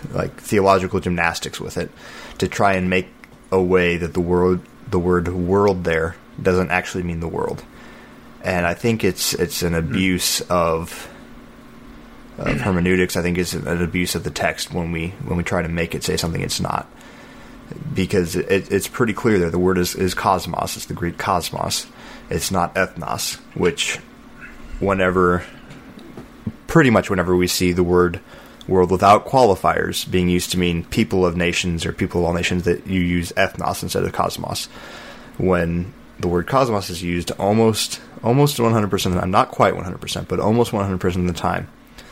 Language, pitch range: English, 85-95 Hz